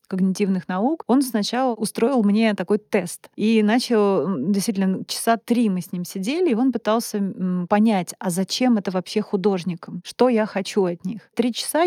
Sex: female